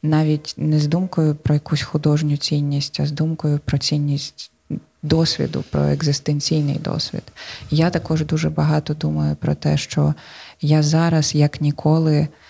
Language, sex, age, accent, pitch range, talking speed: Ukrainian, female, 20-39, native, 145-155 Hz, 140 wpm